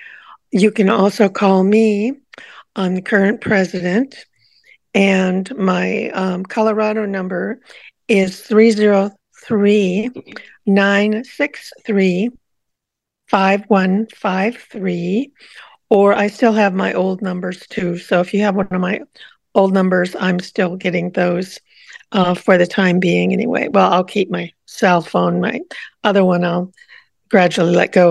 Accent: American